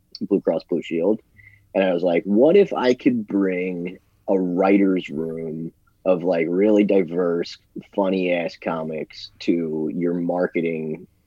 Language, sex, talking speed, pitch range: English, male, 140 wpm, 85-105 Hz